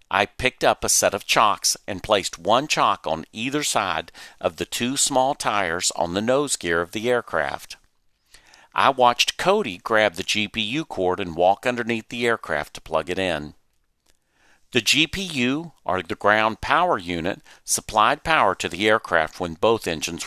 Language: English